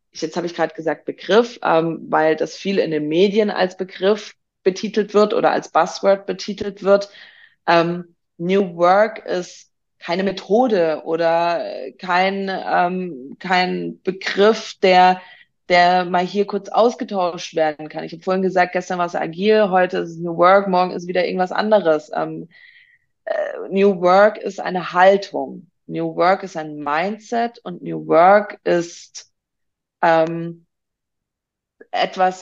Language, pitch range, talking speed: German, 165-195 Hz, 140 wpm